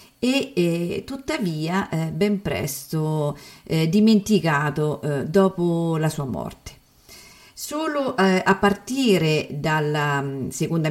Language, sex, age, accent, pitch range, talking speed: Italian, female, 50-69, native, 155-195 Hz, 75 wpm